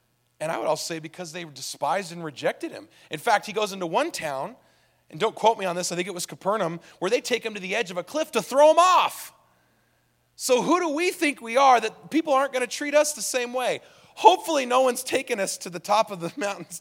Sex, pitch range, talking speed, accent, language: male, 155-240 Hz, 255 wpm, American, English